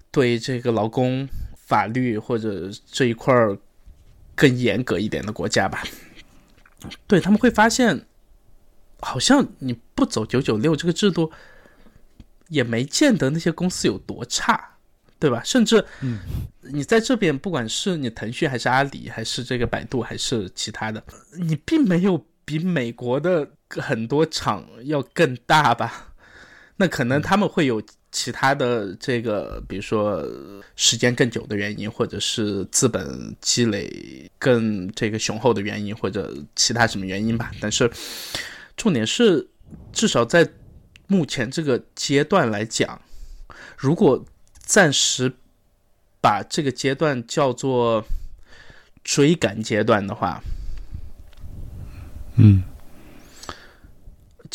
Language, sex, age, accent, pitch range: Chinese, male, 20-39, native, 105-150 Hz